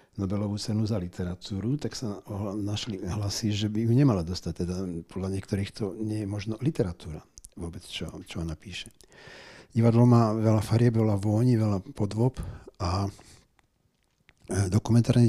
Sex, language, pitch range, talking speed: male, Slovak, 95-115 Hz, 140 wpm